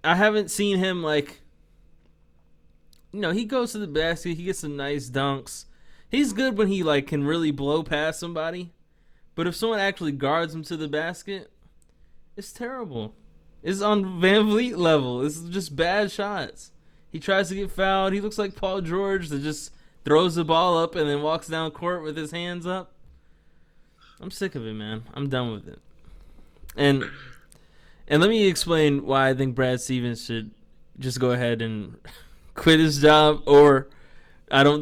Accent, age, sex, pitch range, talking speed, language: American, 20-39, male, 130-175 Hz, 175 wpm, English